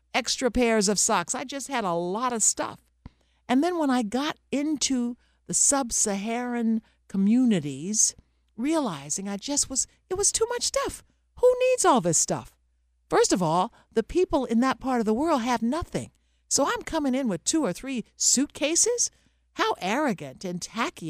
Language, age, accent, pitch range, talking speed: English, 60-79, American, 150-245 Hz, 170 wpm